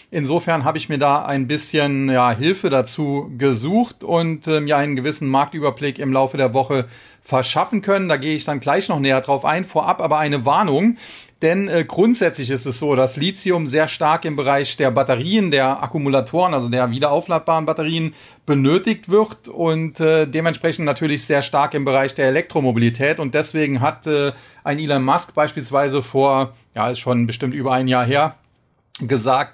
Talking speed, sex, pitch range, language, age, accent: 175 wpm, male, 135-165 Hz, German, 40-59, German